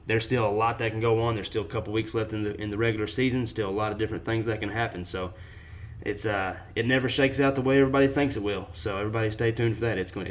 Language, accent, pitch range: English, American, 95-115 Hz